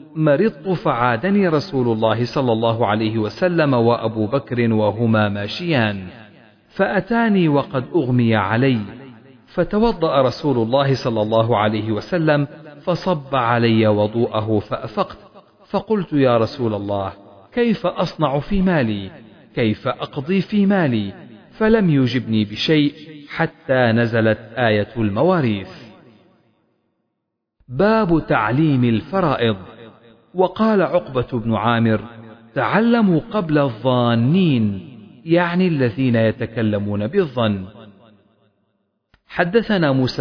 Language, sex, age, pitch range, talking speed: Arabic, male, 40-59, 110-165 Hz, 95 wpm